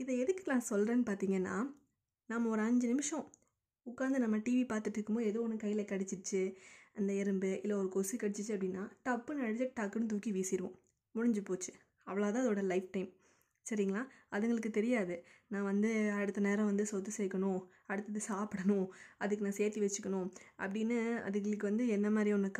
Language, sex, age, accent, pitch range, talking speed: Tamil, female, 20-39, native, 195-235 Hz, 155 wpm